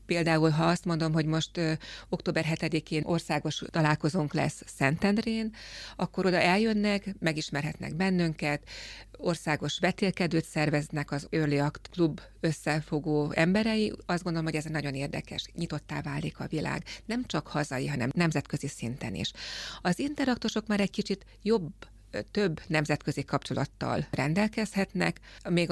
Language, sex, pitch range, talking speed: Hungarian, female, 150-180 Hz, 125 wpm